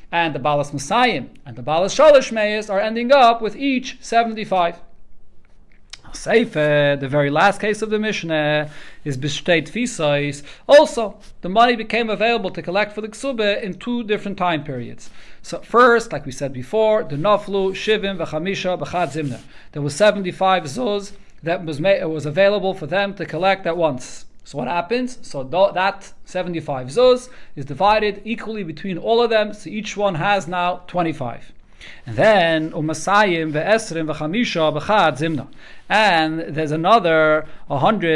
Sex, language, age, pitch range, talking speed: male, English, 40-59, 155-210 Hz, 150 wpm